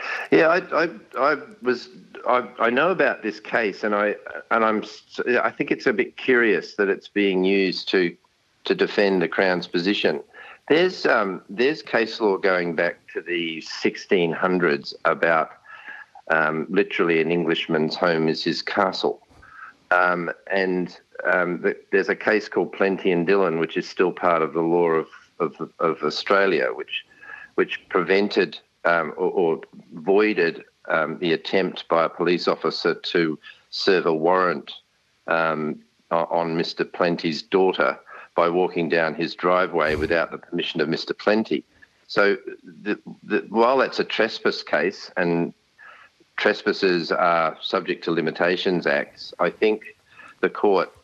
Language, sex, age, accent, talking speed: English, male, 50-69, Australian, 145 wpm